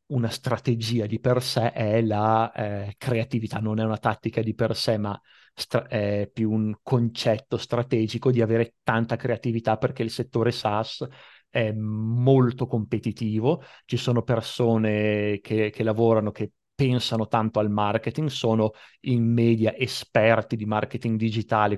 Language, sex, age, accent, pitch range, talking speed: Italian, male, 30-49, native, 110-120 Hz, 140 wpm